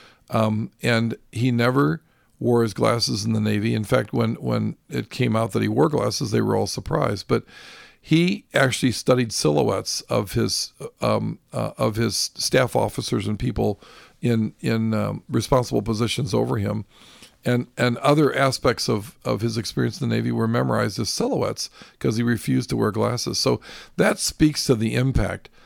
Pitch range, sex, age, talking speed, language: 110-130 Hz, male, 50-69, 175 wpm, English